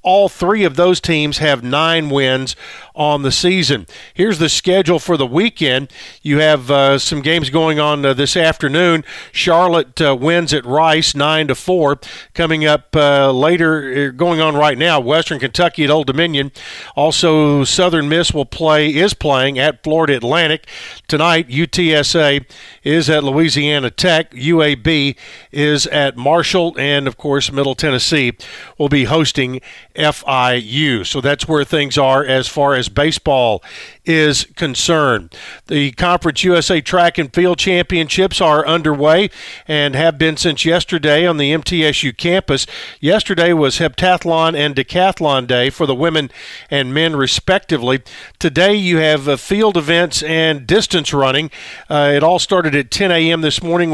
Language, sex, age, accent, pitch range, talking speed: English, male, 50-69, American, 140-170 Hz, 150 wpm